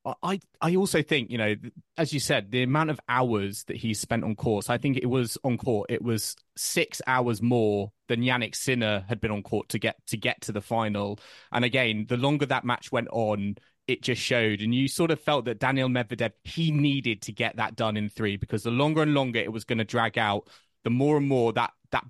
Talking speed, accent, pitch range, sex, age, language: 240 wpm, British, 110-130 Hz, male, 20-39, English